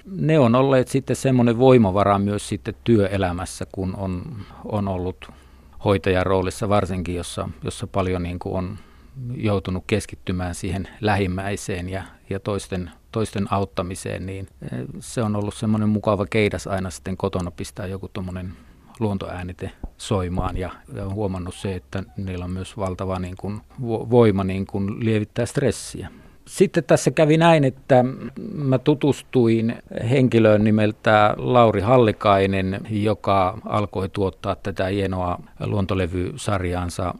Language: Finnish